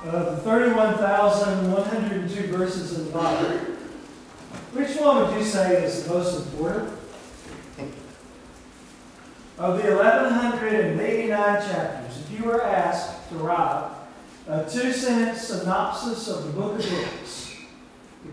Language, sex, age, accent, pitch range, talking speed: English, male, 40-59, American, 185-230 Hz, 115 wpm